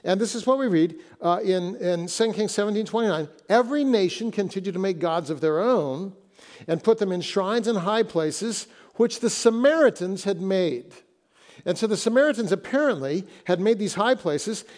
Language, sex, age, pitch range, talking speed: English, male, 60-79, 180-230 Hz, 185 wpm